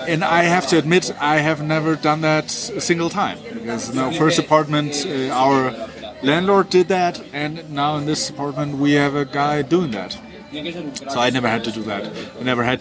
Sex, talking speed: male, 195 wpm